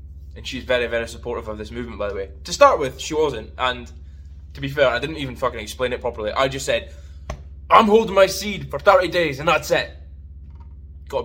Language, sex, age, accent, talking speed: English, male, 10-29, British, 220 wpm